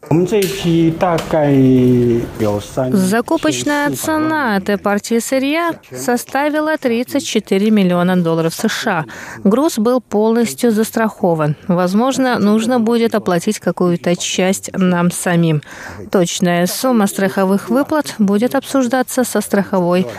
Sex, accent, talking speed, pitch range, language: female, native, 90 wpm, 175-235 Hz, Russian